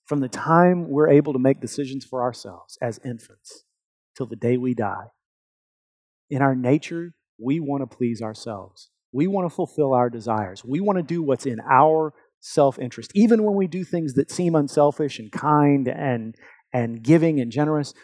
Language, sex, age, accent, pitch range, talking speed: English, male, 40-59, American, 125-160 Hz, 180 wpm